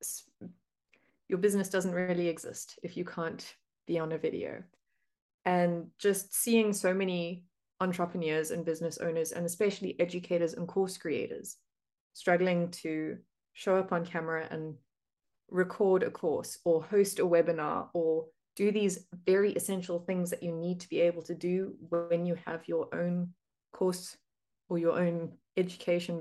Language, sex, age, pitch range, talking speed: English, female, 20-39, 170-190 Hz, 150 wpm